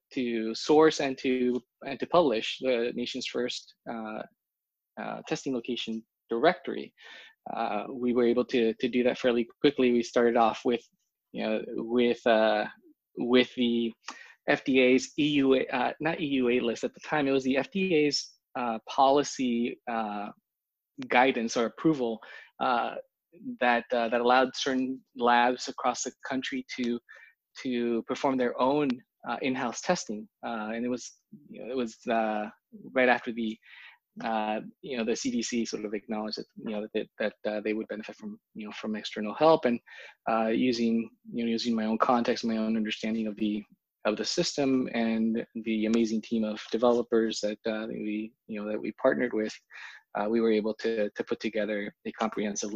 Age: 20-39